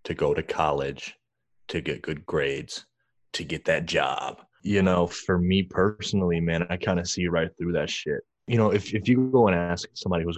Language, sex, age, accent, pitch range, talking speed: English, male, 20-39, American, 85-105 Hz, 210 wpm